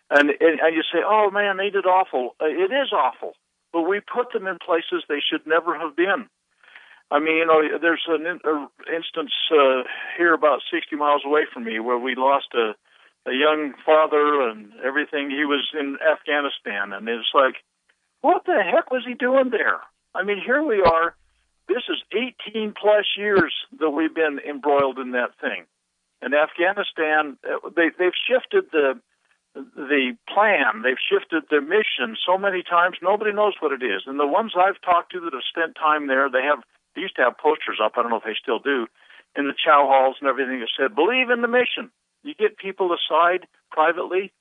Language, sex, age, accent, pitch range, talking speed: English, male, 60-79, American, 145-210 Hz, 195 wpm